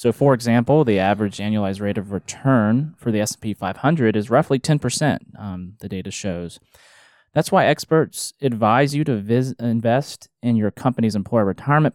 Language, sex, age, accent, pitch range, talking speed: English, male, 20-39, American, 105-135 Hz, 160 wpm